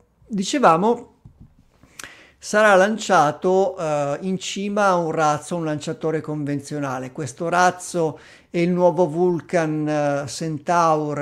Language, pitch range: Italian, 155-190 Hz